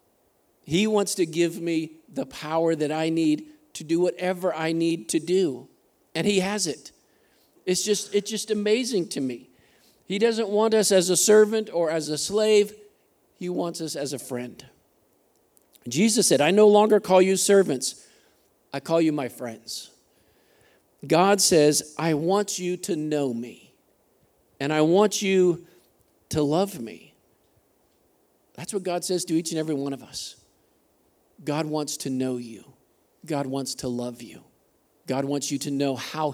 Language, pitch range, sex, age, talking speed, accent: English, 145-195 Hz, male, 50-69, 165 wpm, American